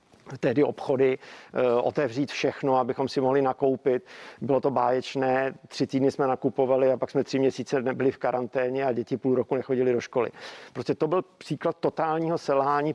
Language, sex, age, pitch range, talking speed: Czech, male, 50-69, 130-150 Hz, 170 wpm